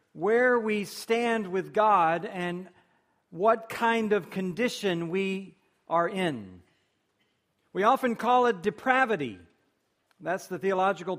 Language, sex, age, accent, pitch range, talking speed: English, male, 50-69, American, 185-240 Hz, 115 wpm